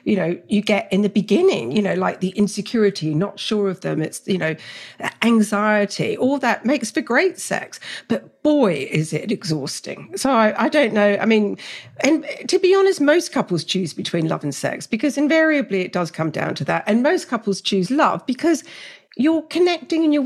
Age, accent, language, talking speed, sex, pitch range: 50-69, British, English, 200 wpm, female, 185-270 Hz